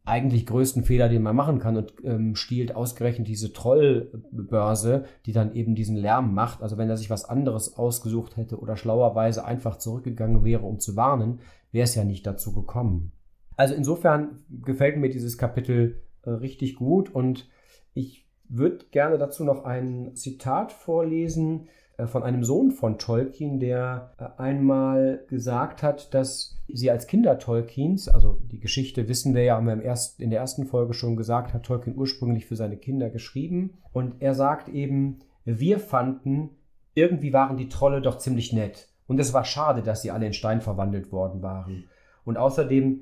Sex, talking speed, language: male, 170 wpm, German